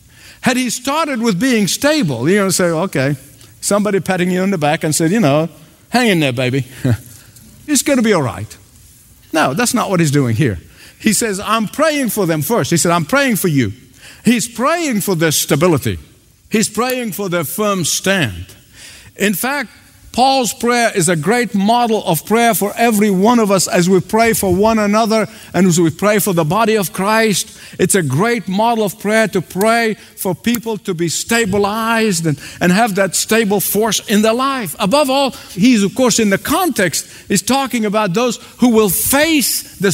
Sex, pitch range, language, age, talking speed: male, 170-235 Hz, English, 50-69, 195 wpm